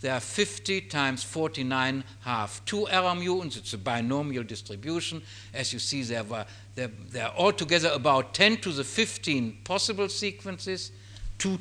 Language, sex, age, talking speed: Spanish, male, 60-79, 155 wpm